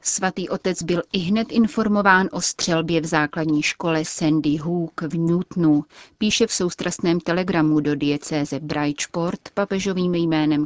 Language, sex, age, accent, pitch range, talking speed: Czech, female, 30-49, native, 155-180 Hz, 135 wpm